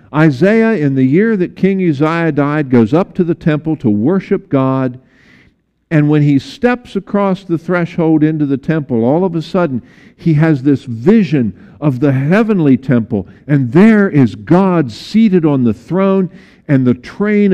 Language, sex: English, male